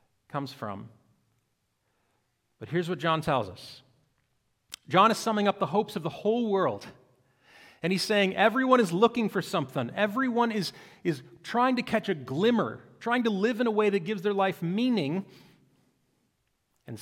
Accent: American